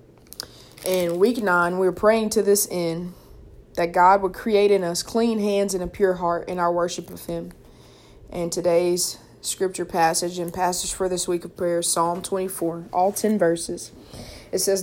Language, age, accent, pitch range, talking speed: English, 20-39, American, 175-190 Hz, 175 wpm